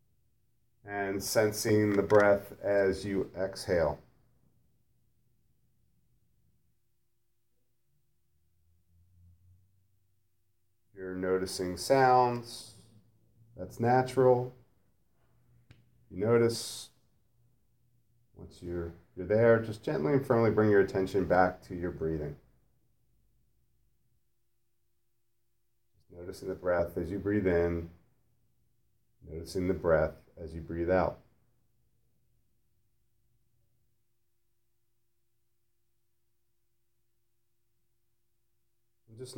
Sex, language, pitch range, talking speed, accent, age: male, English, 100-120 Hz, 70 wpm, American, 40-59